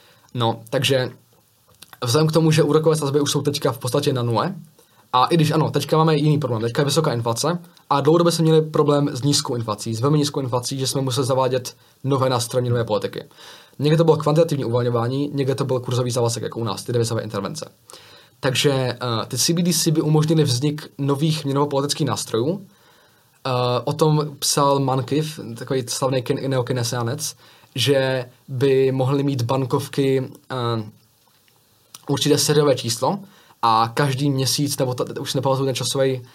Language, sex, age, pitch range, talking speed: Czech, male, 20-39, 125-155 Hz, 165 wpm